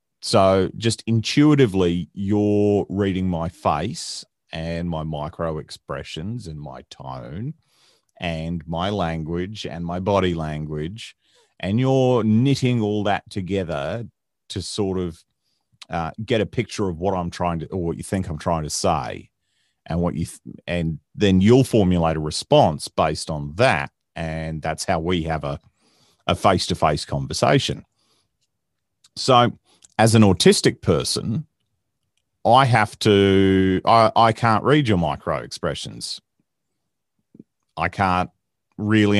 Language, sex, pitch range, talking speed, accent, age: English, male, 80-110 Hz, 135 wpm, Australian, 40-59